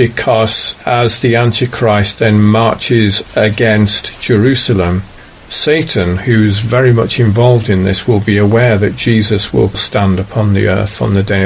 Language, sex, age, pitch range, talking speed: English, male, 50-69, 105-130 Hz, 145 wpm